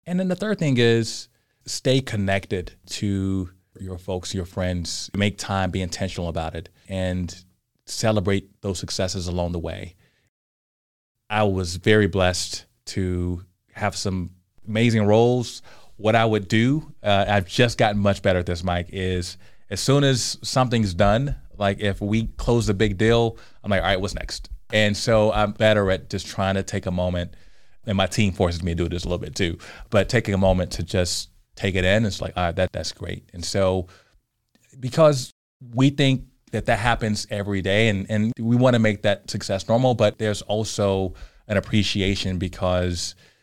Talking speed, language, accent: 180 wpm, English, American